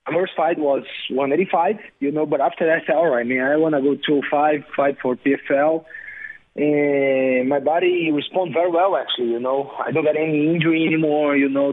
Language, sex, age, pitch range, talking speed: English, male, 20-39, 120-150 Hz, 205 wpm